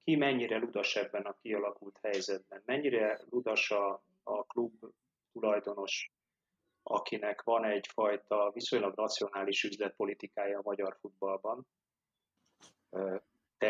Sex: male